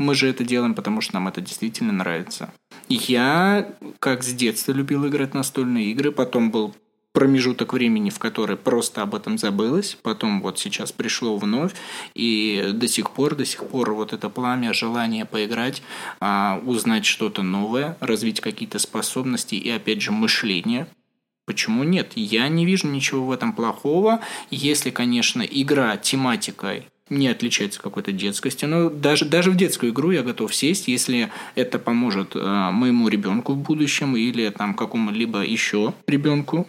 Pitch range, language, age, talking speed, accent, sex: 115-150 Hz, Russian, 20-39, 155 wpm, native, male